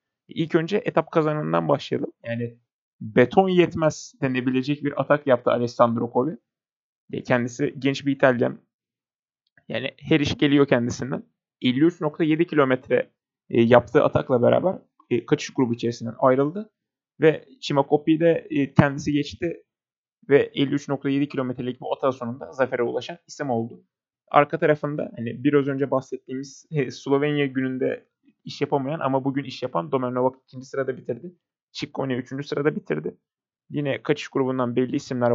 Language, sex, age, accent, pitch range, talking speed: Turkish, male, 30-49, native, 130-170 Hz, 125 wpm